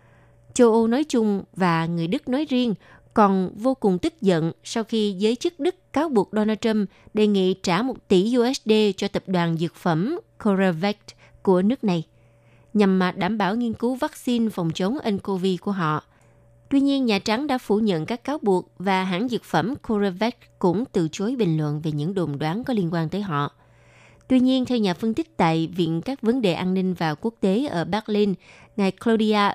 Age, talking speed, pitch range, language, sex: 20-39, 200 wpm, 175-230 Hz, Vietnamese, female